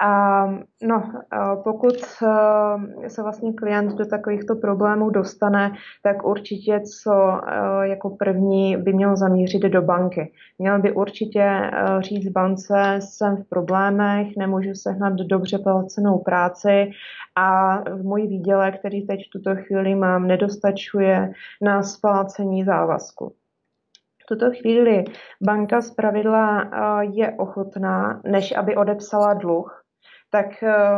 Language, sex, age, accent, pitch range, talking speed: Czech, female, 20-39, native, 195-210 Hz, 115 wpm